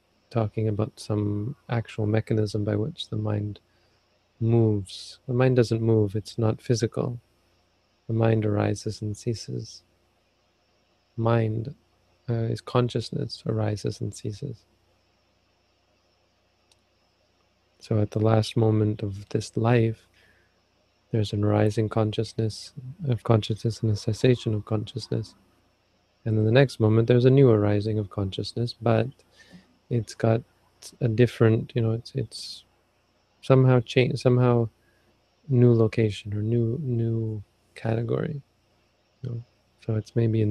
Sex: male